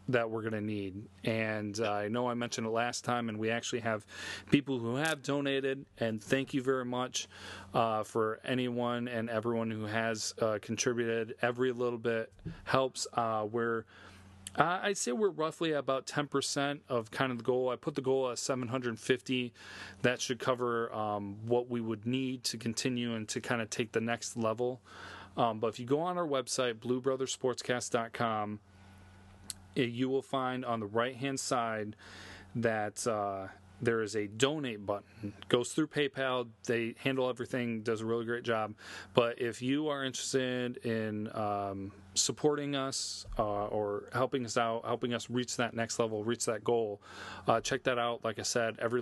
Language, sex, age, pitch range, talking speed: English, male, 30-49, 110-130 Hz, 175 wpm